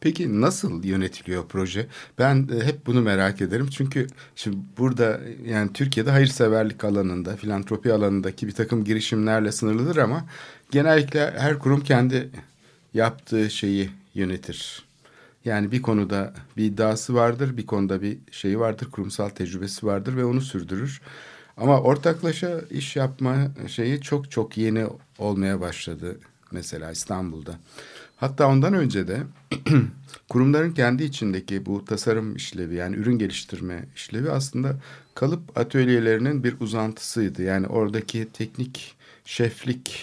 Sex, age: male, 60-79